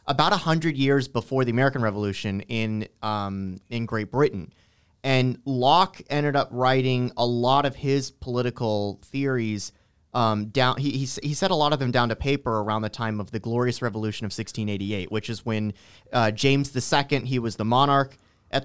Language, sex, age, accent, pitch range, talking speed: English, male, 30-49, American, 110-140 Hz, 185 wpm